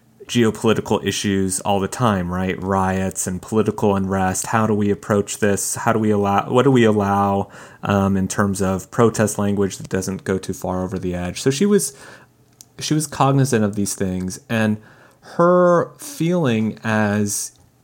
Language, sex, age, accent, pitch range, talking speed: English, male, 30-49, American, 95-120 Hz, 170 wpm